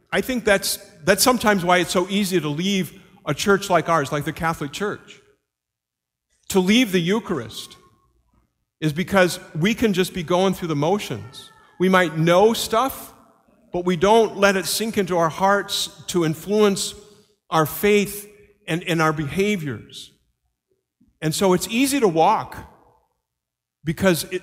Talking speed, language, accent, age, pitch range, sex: 150 wpm, English, American, 50-69, 160-205 Hz, male